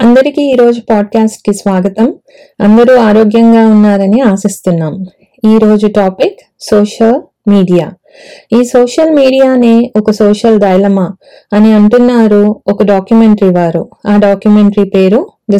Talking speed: 110 wpm